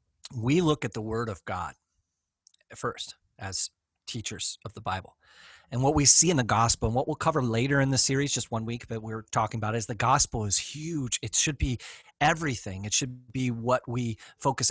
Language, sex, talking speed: English, male, 205 wpm